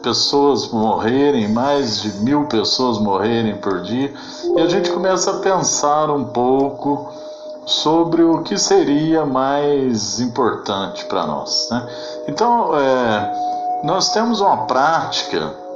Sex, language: male, Portuguese